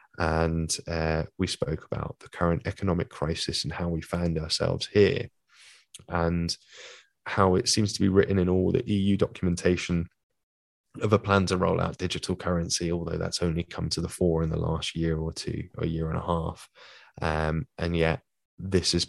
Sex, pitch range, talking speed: male, 85-95 Hz, 180 wpm